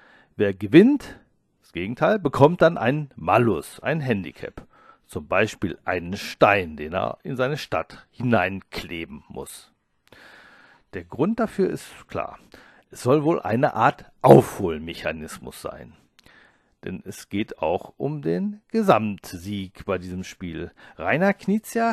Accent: German